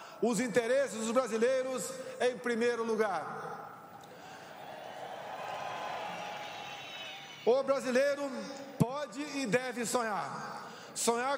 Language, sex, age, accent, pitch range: Chinese, male, 50-69, Brazilian, 240-270 Hz